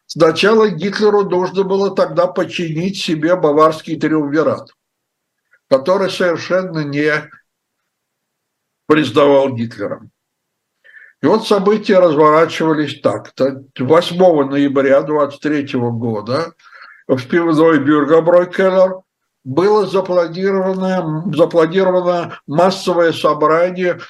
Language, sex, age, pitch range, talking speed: Russian, male, 60-79, 140-185 Hz, 75 wpm